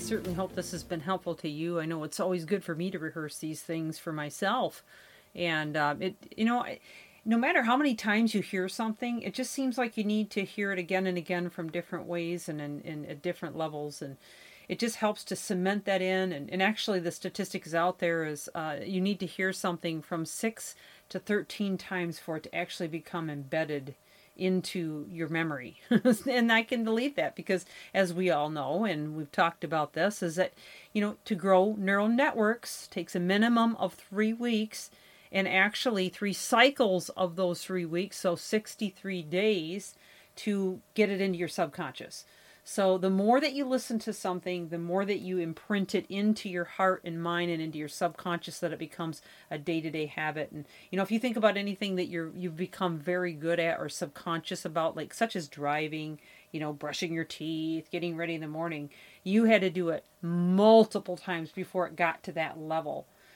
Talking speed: 200 wpm